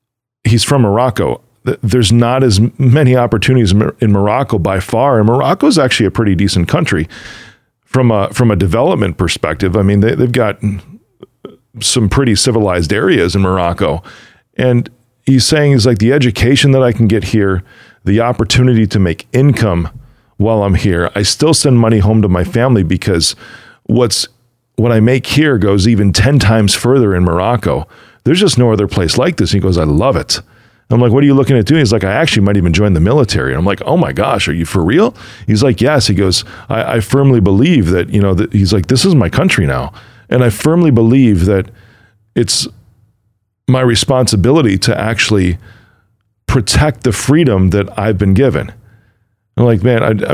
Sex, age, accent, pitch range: male, 40-59, American, 100-125 Hz